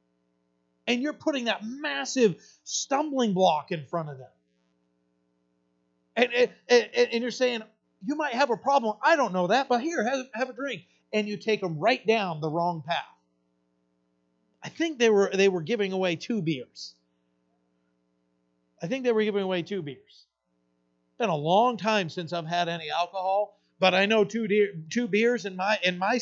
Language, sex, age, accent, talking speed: English, male, 40-59, American, 180 wpm